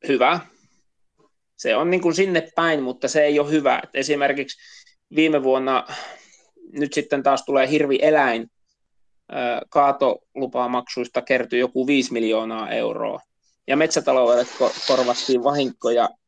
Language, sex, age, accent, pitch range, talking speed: Finnish, male, 20-39, native, 125-150 Hz, 120 wpm